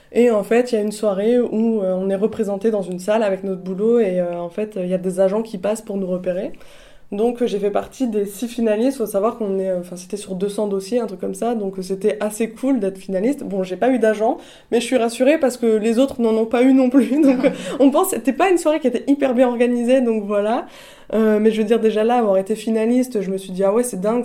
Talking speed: 275 wpm